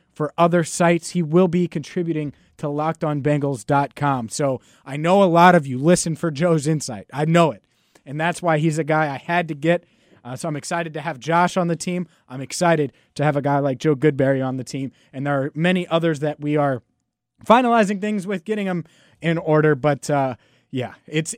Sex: male